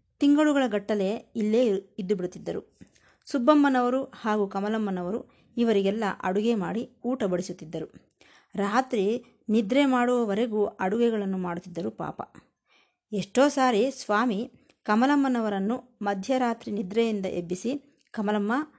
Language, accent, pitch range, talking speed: Kannada, native, 195-250 Hz, 85 wpm